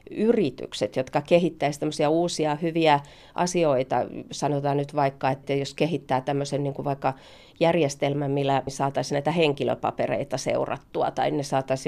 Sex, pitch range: female, 140-170 Hz